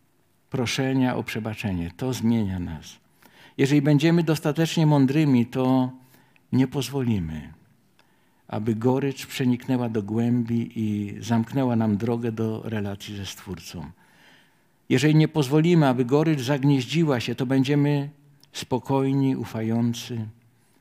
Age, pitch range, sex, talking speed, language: 50-69, 110-135 Hz, male, 105 wpm, Polish